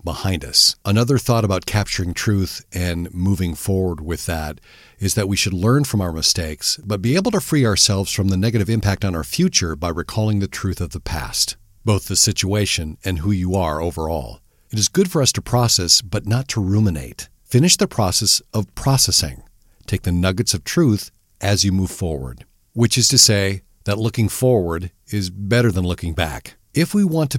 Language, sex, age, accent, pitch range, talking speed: English, male, 50-69, American, 90-115 Hz, 195 wpm